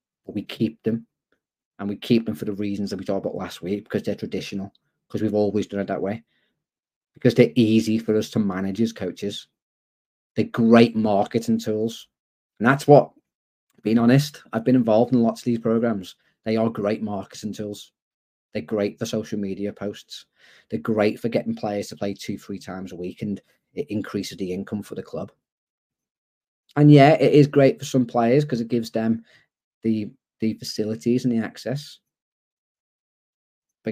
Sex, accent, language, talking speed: male, British, English, 180 wpm